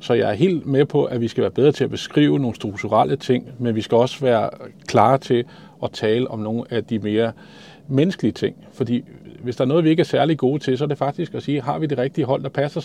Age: 40-59